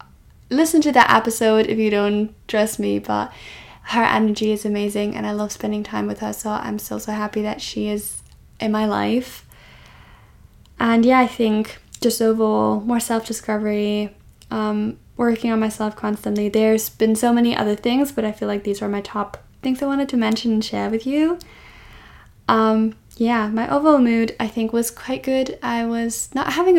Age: 10-29